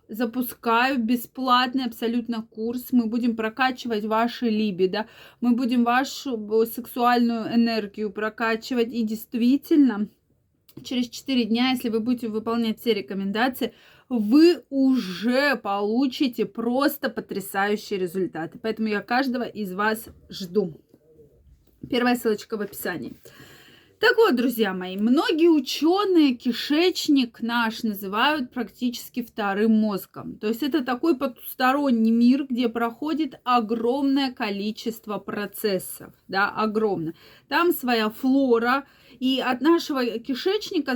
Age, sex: 20-39, female